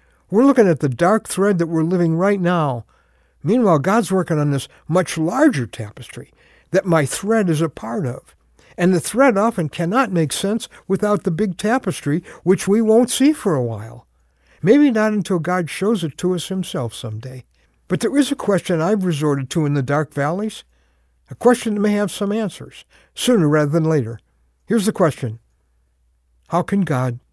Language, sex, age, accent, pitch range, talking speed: English, male, 60-79, American, 140-210 Hz, 180 wpm